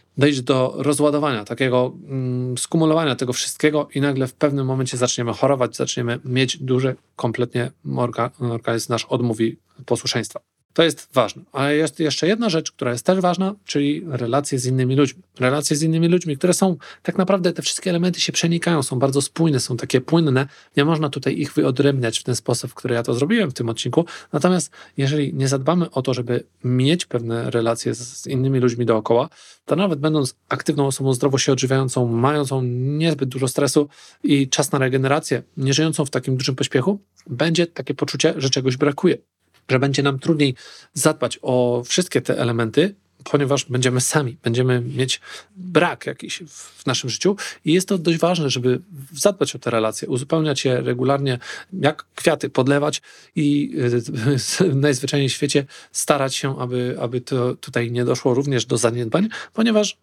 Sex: male